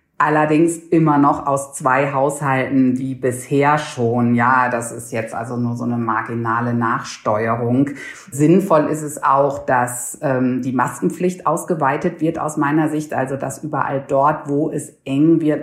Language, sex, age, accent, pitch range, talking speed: German, female, 50-69, German, 130-155 Hz, 155 wpm